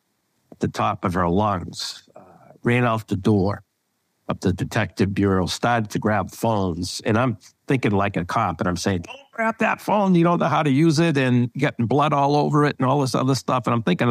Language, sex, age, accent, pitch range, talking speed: English, male, 60-79, American, 100-135 Hz, 230 wpm